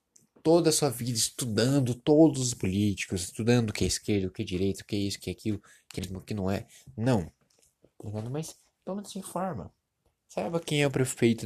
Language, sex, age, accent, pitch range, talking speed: Portuguese, male, 20-39, Brazilian, 100-135 Hz, 210 wpm